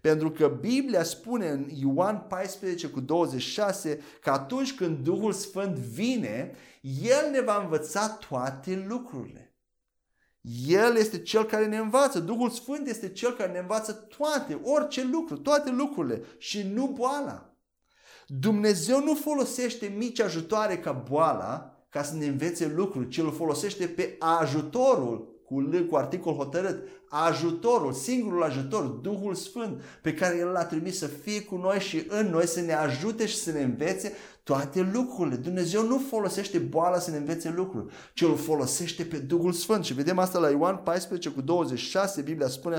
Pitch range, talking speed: 165-225 Hz, 155 wpm